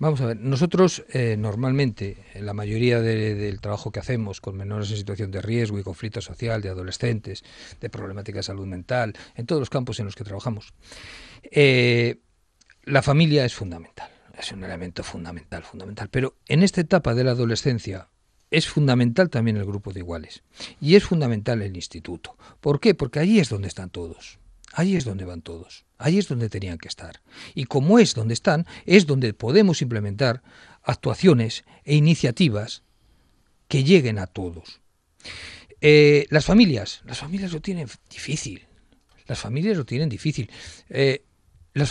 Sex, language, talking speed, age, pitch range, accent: male, Spanish, 165 wpm, 50-69, 100-145 Hz, Spanish